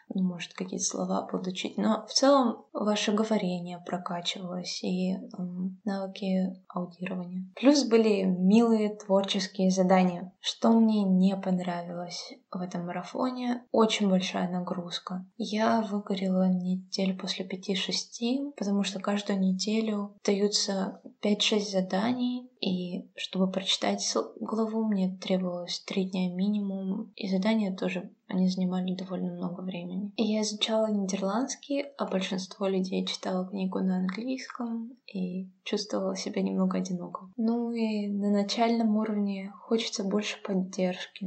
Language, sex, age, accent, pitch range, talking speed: Russian, female, 20-39, native, 185-215 Hz, 120 wpm